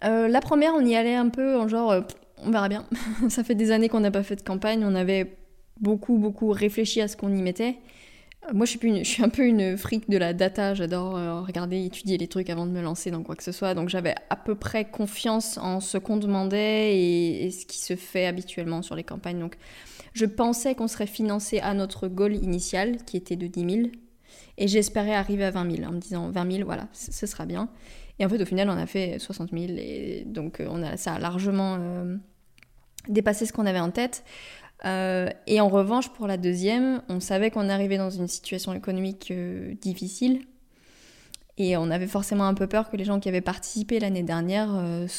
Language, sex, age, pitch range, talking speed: French, female, 20-39, 185-220 Hz, 225 wpm